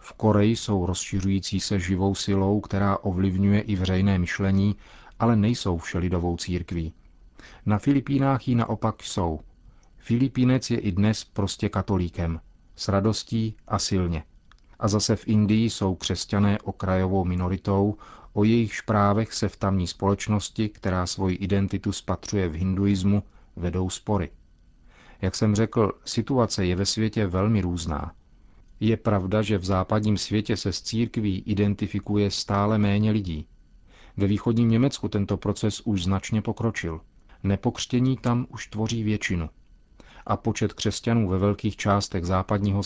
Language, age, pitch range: Czech, 40-59, 95-110 Hz